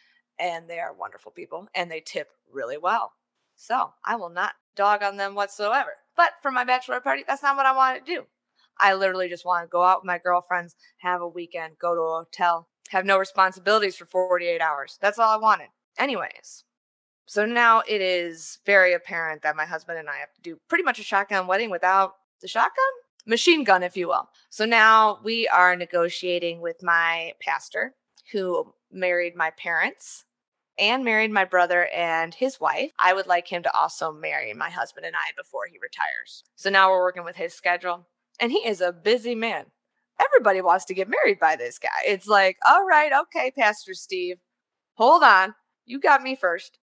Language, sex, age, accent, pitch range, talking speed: English, female, 20-39, American, 175-225 Hz, 195 wpm